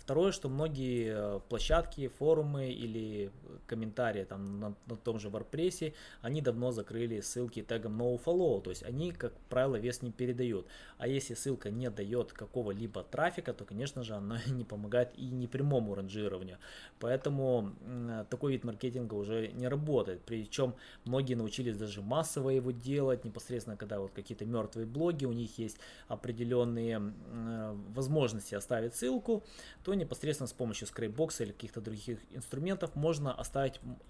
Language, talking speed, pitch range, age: Russian, 140 wpm, 115-140 Hz, 20-39